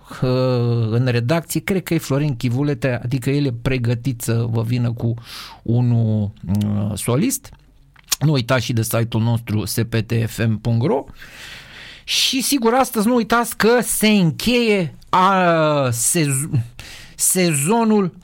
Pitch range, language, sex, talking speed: 120-170 Hz, Romanian, male, 115 wpm